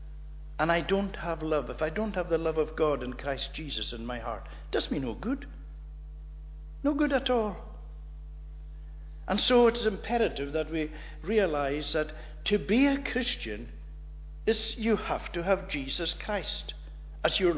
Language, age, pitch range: English, 60-79, 130-200 Hz